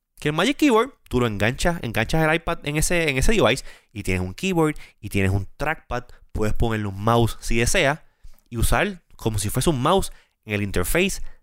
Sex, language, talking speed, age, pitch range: male, Spanish, 205 wpm, 20-39, 85-130 Hz